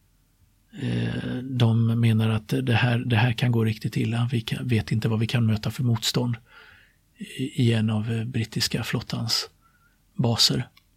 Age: 50-69